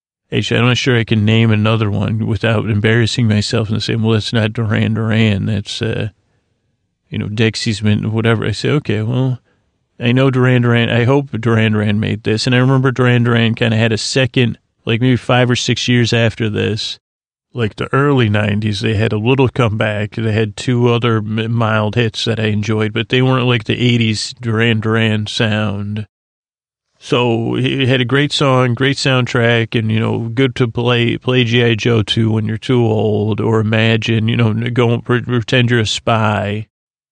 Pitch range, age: 110-125 Hz, 40-59